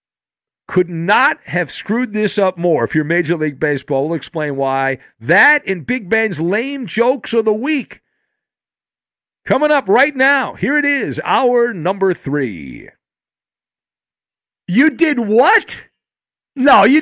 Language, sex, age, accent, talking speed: English, male, 50-69, American, 140 wpm